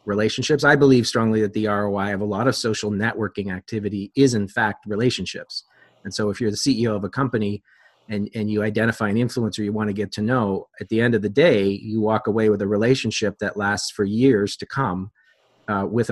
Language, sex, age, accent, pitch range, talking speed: English, male, 30-49, American, 95-110 Hz, 220 wpm